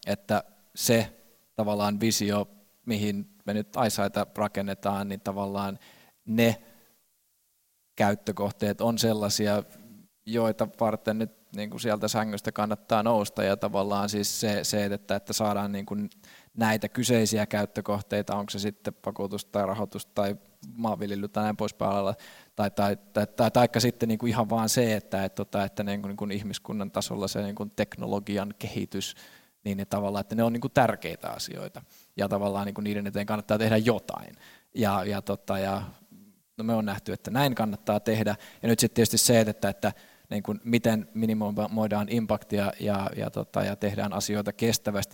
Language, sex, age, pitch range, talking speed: Finnish, male, 20-39, 100-110 Hz, 165 wpm